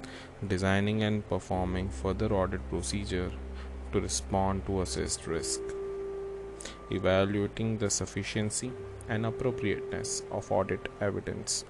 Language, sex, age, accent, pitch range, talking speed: Hindi, male, 20-39, native, 90-115 Hz, 95 wpm